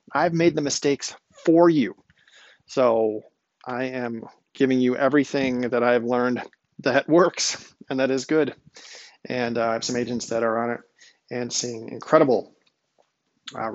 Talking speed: 155 wpm